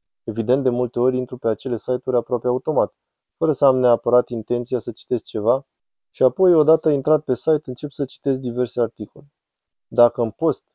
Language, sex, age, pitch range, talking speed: Romanian, male, 20-39, 115-140 Hz, 180 wpm